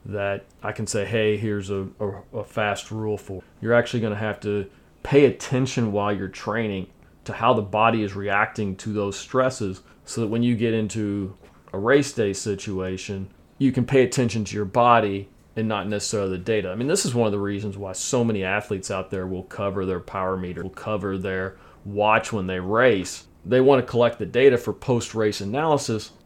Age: 40-59